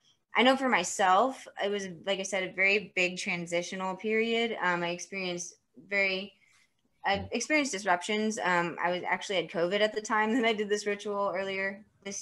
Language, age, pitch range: English, 20-39, 175-205 Hz